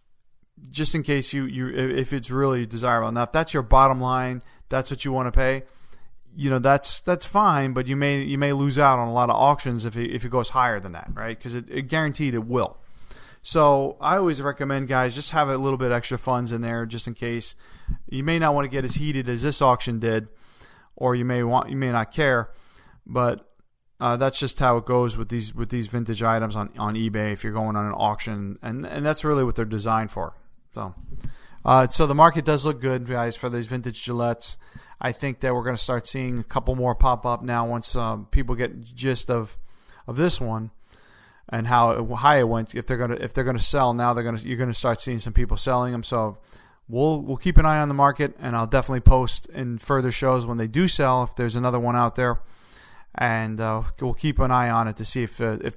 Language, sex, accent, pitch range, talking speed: English, male, American, 115-135 Hz, 230 wpm